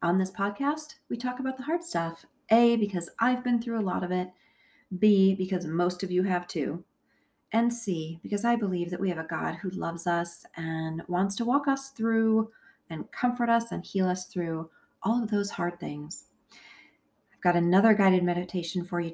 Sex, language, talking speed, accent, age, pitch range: female, English, 200 wpm, American, 40-59, 175-230 Hz